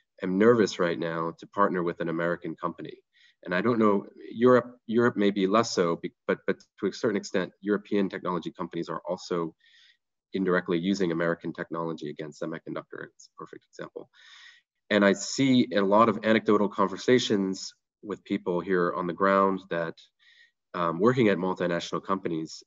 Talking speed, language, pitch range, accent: 165 wpm, English, 85-105 Hz, Canadian